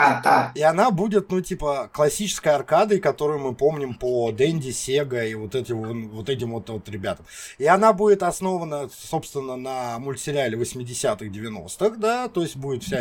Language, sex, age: Russian, male, 20-39